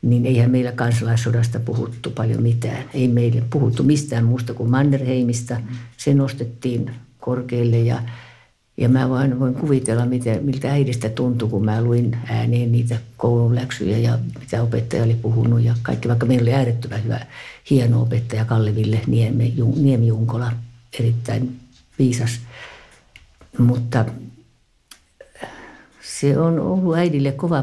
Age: 50-69